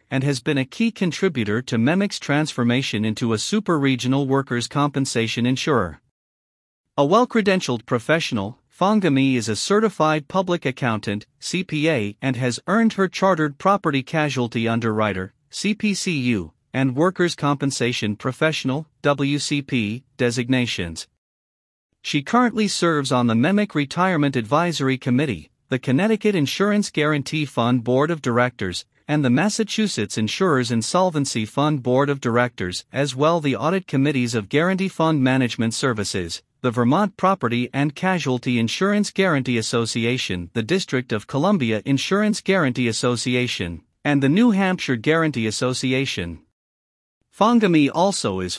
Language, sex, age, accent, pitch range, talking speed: English, male, 50-69, American, 120-165 Hz, 125 wpm